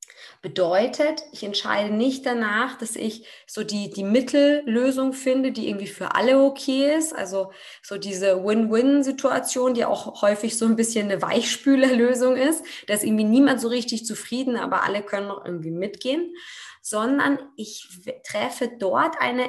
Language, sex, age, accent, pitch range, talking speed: German, female, 20-39, German, 195-255 Hz, 150 wpm